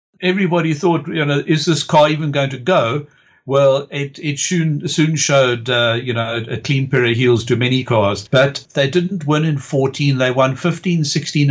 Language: English